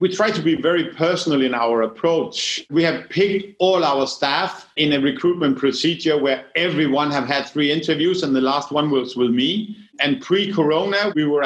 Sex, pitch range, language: male, 135-180 Hz, English